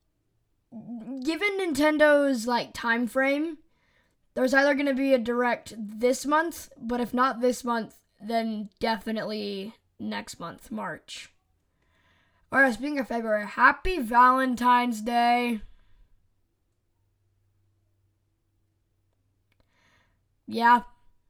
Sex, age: female, 10-29